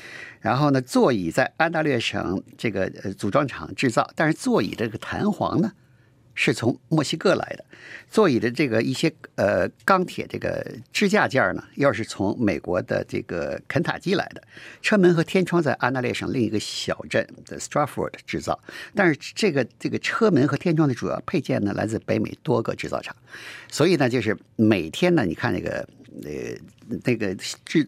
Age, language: 50-69, Chinese